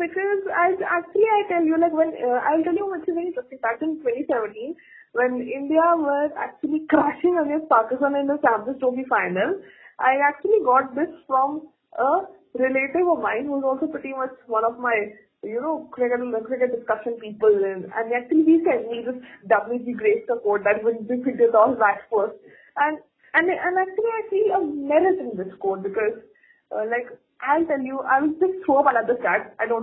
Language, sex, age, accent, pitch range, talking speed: English, female, 20-39, Indian, 240-340 Hz, 195 wpm